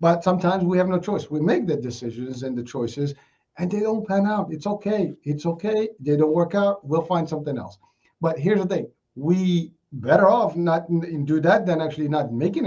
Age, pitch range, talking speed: 50-69, 140-185 Hz, 210 wpm